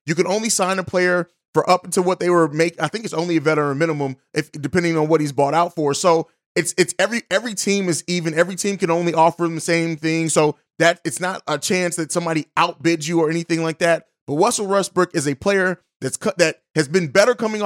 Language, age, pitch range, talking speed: English, 30-49, 165-205 Hz, 245 wpm